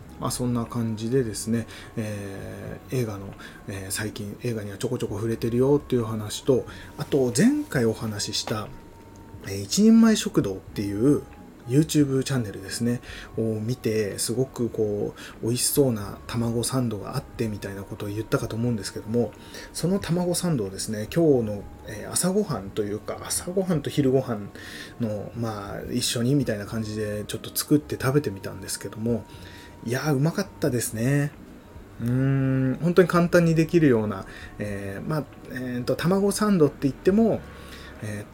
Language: Japanese